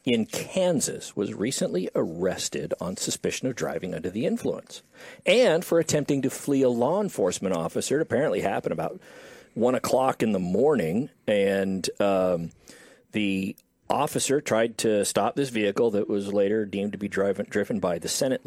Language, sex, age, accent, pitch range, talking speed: English, male, 50-69, American, 105-155 Hz, 160 wpm